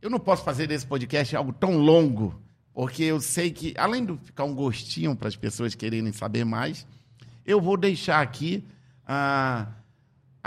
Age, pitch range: 60-79, 135-210 Hz